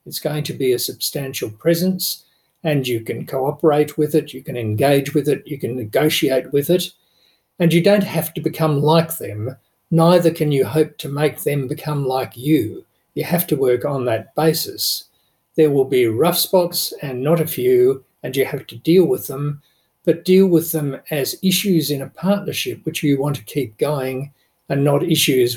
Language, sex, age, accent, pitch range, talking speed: English, male, 50-69, Australian, 135-170 Hz, 190 wpm